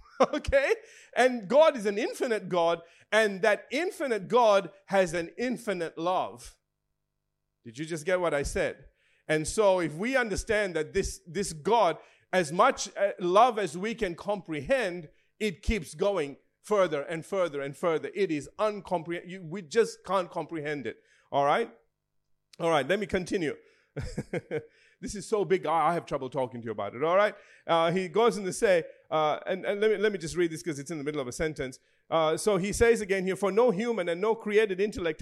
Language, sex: English, male